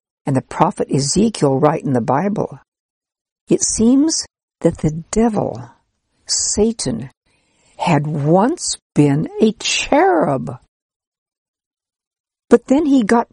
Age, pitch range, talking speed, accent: 60-79, 140-195 Hz, 105 wpm, American